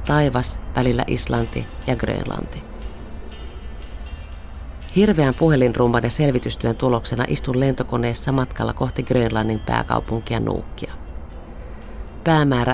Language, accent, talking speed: Finnish, native, 85 wpm